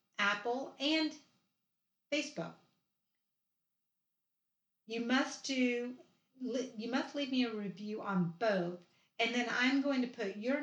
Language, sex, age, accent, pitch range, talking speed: English, female, 50-69, American, 205-250 Hz, 120 wpm